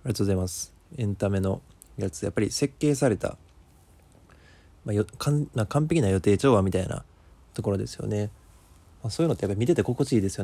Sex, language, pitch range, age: male, Japanese, 90-115 Hz, 20-39